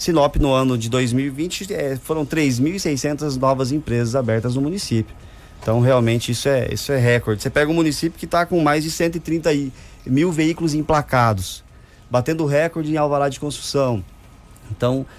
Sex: male